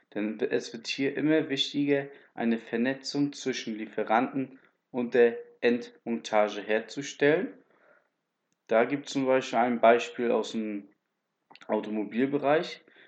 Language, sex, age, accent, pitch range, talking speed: German, male, 20-39, German, 115-140 Hz, 110 wpm